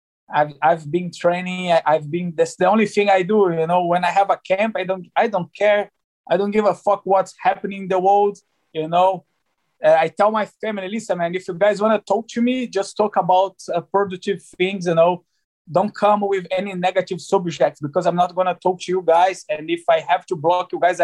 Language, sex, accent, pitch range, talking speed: English, male, Brazilian, 175-205 Hz, 235 wpm